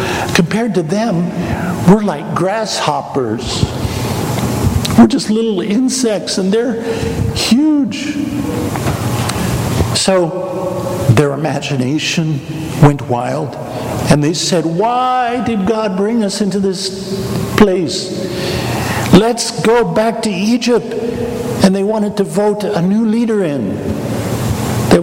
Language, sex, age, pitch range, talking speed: English, male, 60-79, 130-195 Hz, 105 wpm